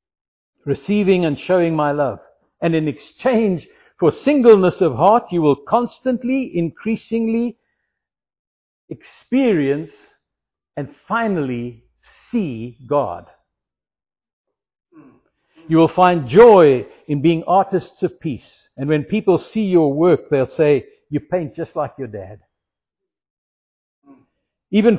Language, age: English, 60-79